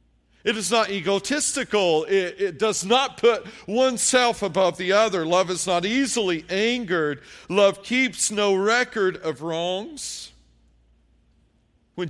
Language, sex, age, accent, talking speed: English, male, 50-69, American, 125 wpm